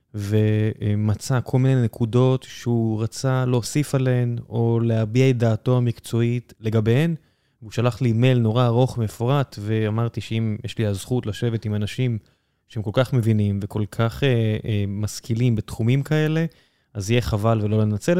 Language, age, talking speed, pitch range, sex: Hebrew, 20-39, 150 wpm, 110-135 Hz, male